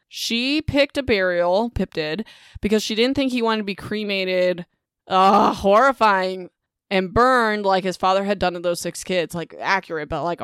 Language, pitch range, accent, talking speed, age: English, 180-235 Hz, American, 185 wpm, 20-39